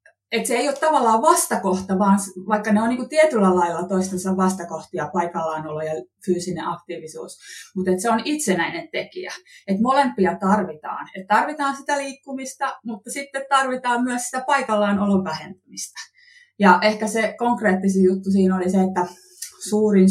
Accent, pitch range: native, 180-220 Hz